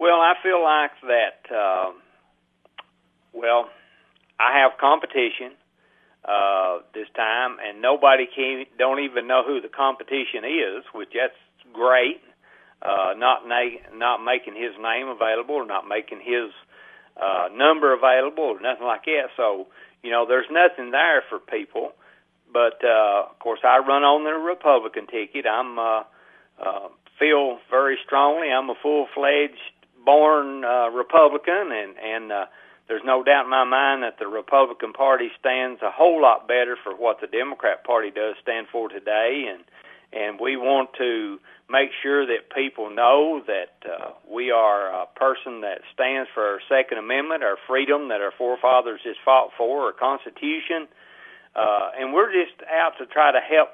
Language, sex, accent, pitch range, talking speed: English, male, American, 120-145 Hz, 160 wpm